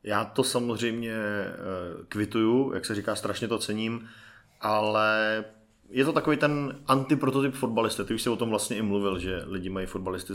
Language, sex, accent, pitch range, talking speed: Czech, male, native, 100-110 Hz, 170 wpm